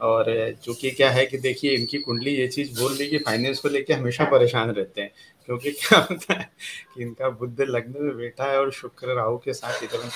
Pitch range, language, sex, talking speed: 120-145 Hz, Hindi, male, 225 wpm